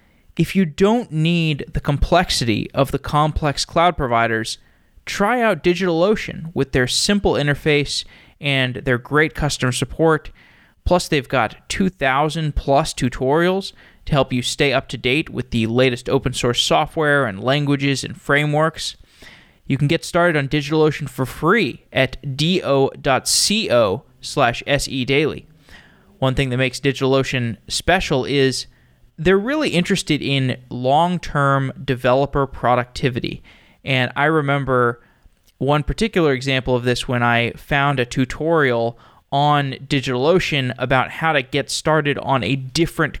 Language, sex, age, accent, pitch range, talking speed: English, male, 20-39, American, 125-155 Hz, 130 wpm